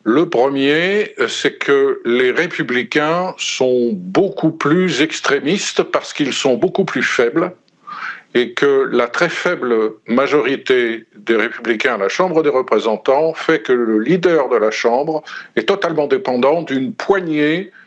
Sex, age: male, 50-69